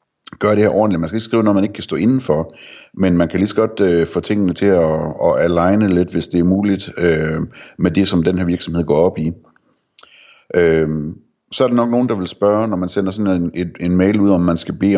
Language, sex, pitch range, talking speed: Danish, male, 85-100 Hz, 250 wpm